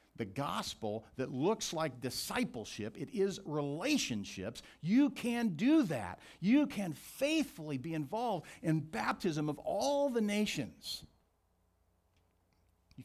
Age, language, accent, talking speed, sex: 50-69, English, American, 115 wpm, male